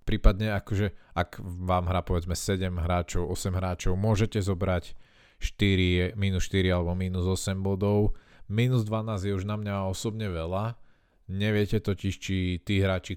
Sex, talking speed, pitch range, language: male, 145 wpm, 90-105 Hz, Slovak